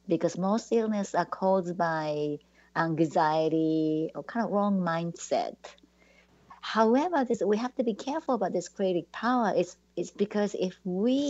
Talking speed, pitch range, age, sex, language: 150 wpm, 160-195 Hz, 50-69, female, English